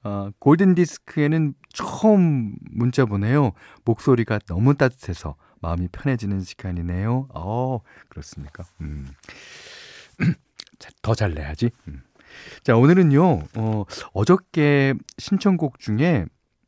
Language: Korean